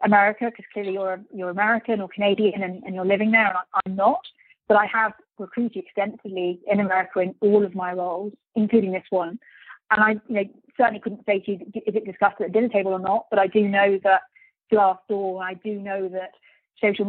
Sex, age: female, 30-49